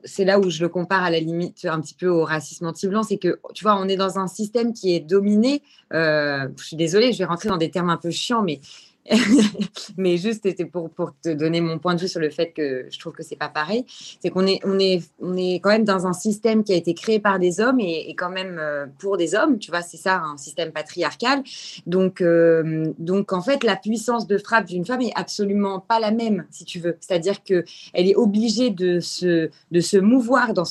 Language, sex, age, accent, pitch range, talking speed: French, female, 20-39, French, 175-230 Hz, 240 wpm